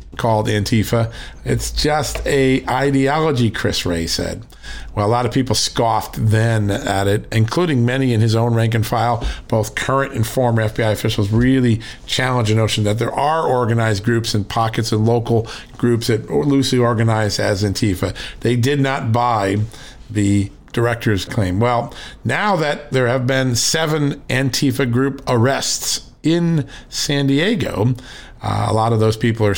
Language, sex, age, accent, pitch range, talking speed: English, male, 50-69, American, 110-145 Hz, 160 wpm